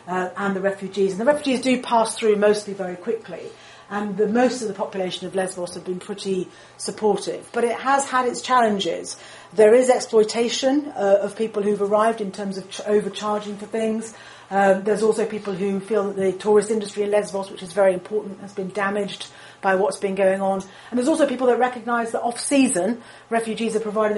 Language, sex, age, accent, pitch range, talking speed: English, female, 40-59, British, 195-230 Hz, 200 wpm